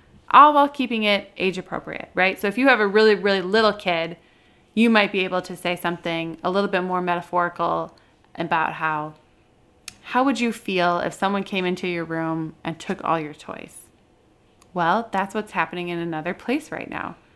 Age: 20-39